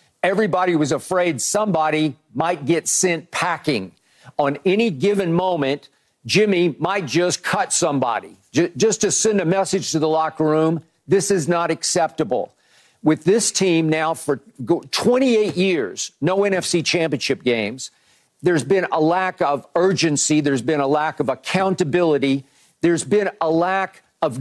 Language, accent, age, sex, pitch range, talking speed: English, American, 50-69, male, 155-185 Hz, 145 wpm